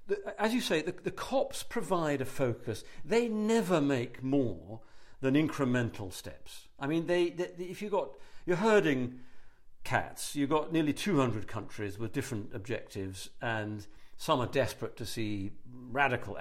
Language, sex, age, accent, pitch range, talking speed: English, male, 50-69, British, 115-170 Hz, 150 wpm